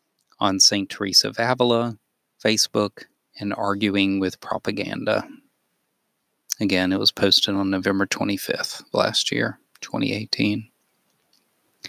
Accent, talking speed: American, 105 wpm